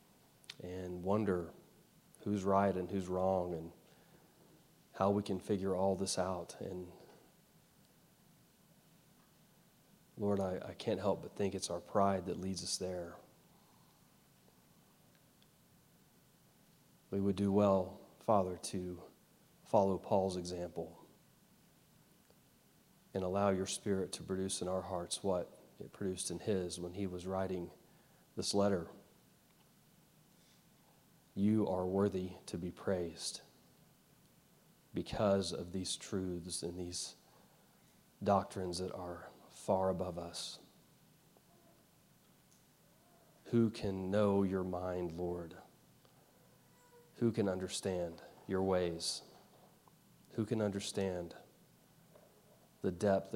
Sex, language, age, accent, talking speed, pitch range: male, English, 40-59, American, 105 wpm, 90-100 Hz